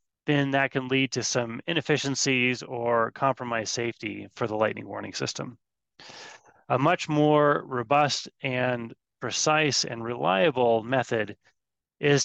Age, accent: 30-49, American